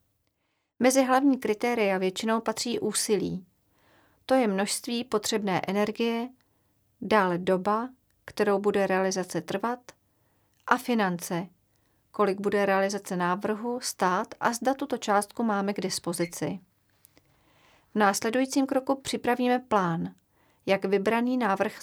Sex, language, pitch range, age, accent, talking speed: female, Czech, 185-230 Hz, 40-59, native, 105 wpm